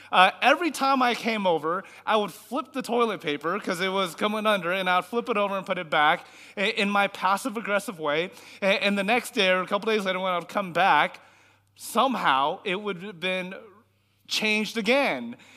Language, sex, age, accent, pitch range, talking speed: English, male, 30-49, American, 175-235 Hz, 200 wpm